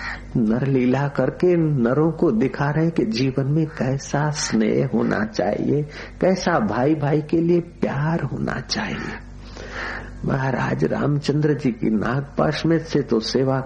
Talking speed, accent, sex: 135 wpm, native, male